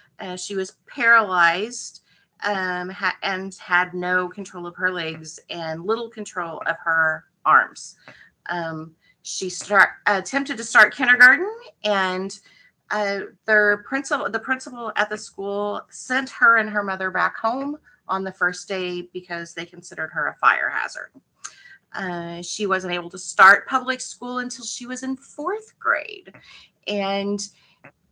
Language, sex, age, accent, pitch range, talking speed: English, female, 30-49, American, 175-215 Hz, 135 wpm